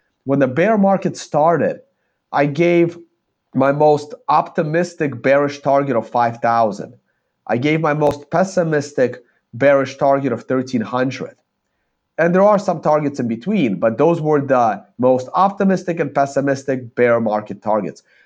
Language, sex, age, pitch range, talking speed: English, male, 40-59, 140-185 Hz, 135 wpm